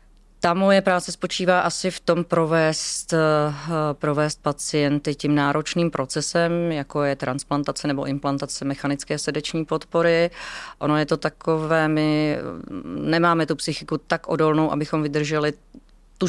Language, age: Czech, 30-49